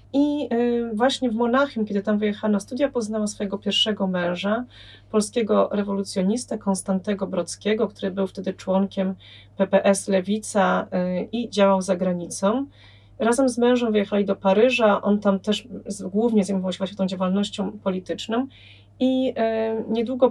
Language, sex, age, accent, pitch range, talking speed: Polish, female, 30-49, native, 190-220 Hz, 130 wpm